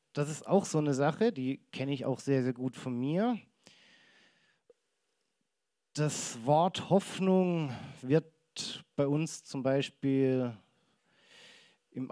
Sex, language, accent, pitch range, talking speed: male, German, German, 130-185 Hz, 120 wpm